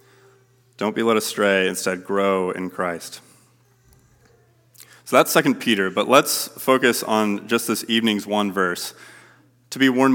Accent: American